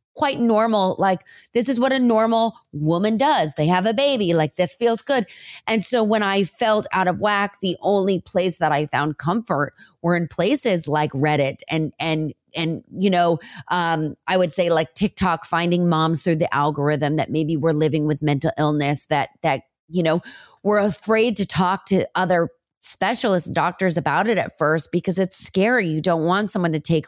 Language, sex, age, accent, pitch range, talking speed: English, female, 30-49, American, 155-190 Hz, 195 wpm